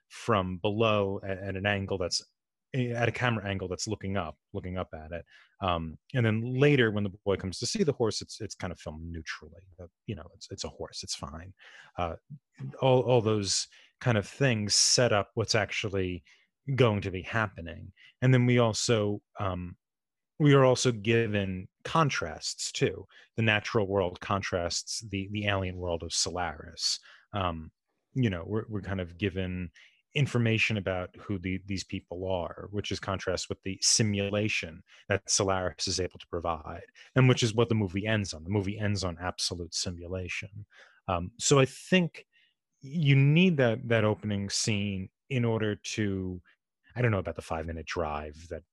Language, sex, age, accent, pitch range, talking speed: English, male, 30-49, American, 90-115 Hz, 175 wpm